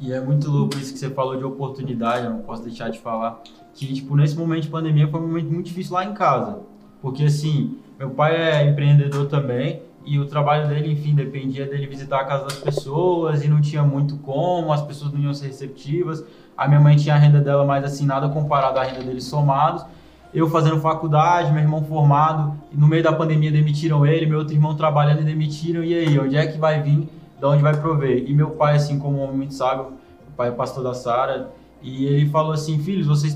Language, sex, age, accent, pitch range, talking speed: Portuguese, male, 20-39, Brazilian, 140-165 Hz, 230 wpm